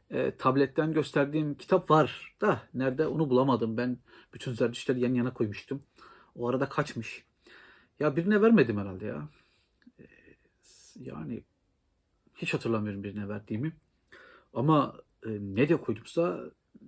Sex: male